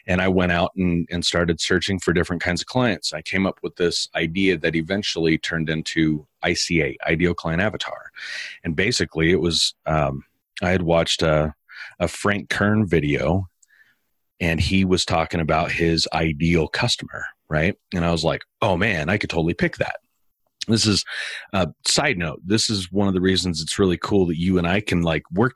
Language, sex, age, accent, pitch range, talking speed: English, male, 30-49, American, 85-105 Hz, 190 wpm